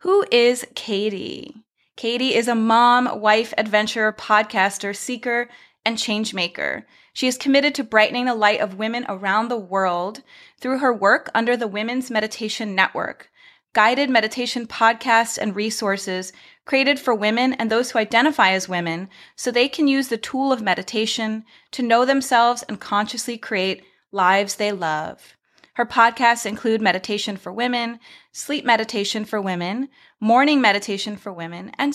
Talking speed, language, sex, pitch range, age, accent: 150 wpm, English, female, 205-250 Hz, 30-49, American